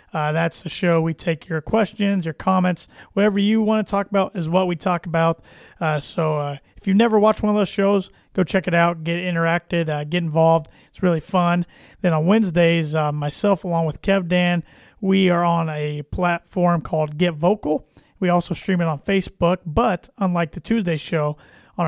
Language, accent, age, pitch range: English, American, 30-49, 160-190 Hz